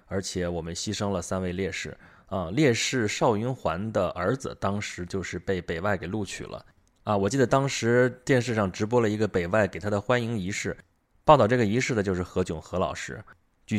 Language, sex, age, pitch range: Chinese, male, 20-39, 95-120 Hz